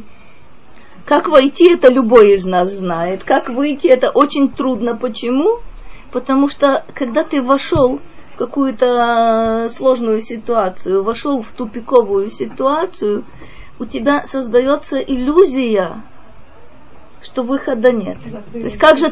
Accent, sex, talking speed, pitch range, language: native, female, 115 wpm, 240-290 Hz, Russian